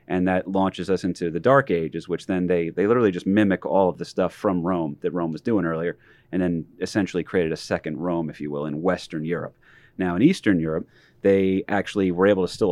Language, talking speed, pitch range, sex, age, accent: English, 230 wpm, 85-105 Hz, male, 30-49, American